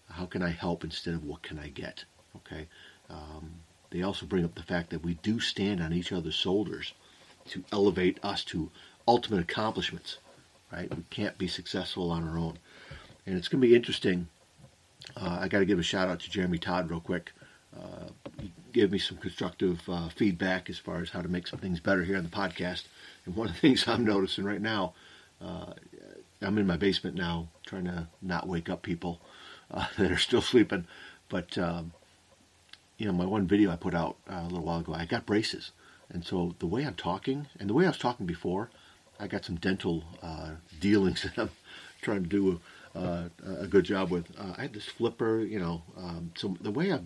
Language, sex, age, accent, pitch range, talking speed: English, male, 40-59, American, 85-100 Hz, 210 wpm